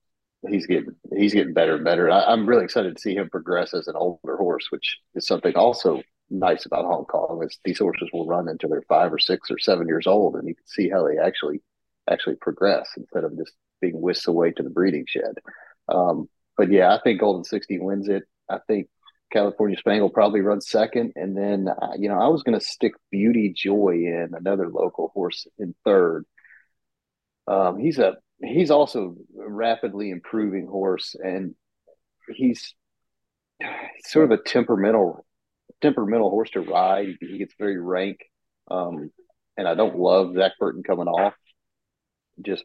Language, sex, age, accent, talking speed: English, male, 40-59, American, 175 wpm